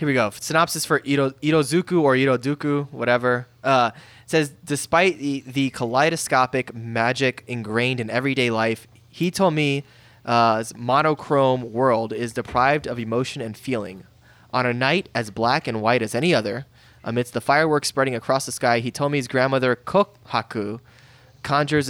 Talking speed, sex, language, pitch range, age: 145 wpm, male, English, 120-145 Hz, 10-29